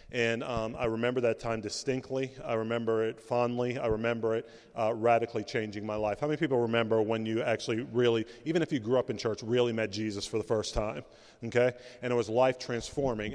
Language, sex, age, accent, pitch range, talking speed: English, male, 40-59, American, 115-135 Hz, 205 wpm